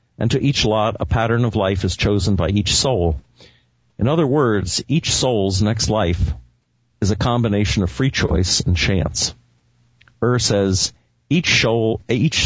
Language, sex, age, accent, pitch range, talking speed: English, male, 50-69, American, 95-120 Hz, 150 wpm